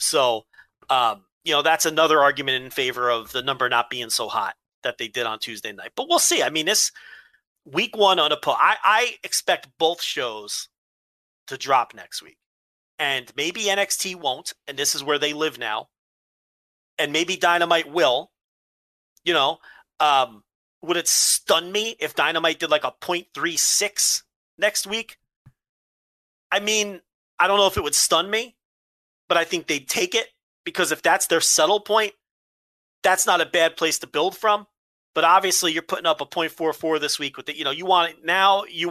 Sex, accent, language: male, American, English